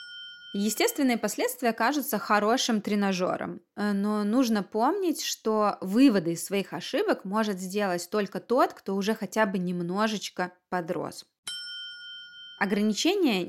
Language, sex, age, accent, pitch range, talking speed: Russian, female, 20-39, native, 180-240 Hz, 105 wpm